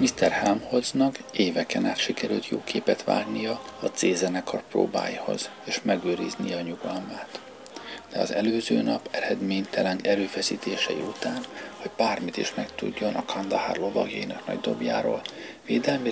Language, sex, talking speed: Hungarian, male, 125 wpm